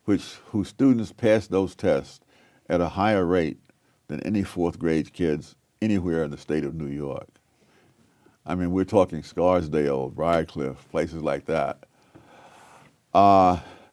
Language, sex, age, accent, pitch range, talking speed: English, male, 60-79, American, 85-110 Hz, 140 wpm